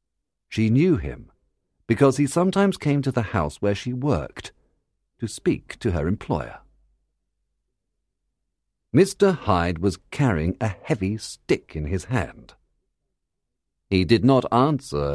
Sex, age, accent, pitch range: male, 50-69, British, 90-130 Hz